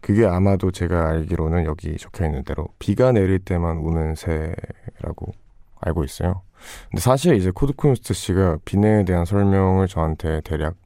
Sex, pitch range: male, 80-105 Hz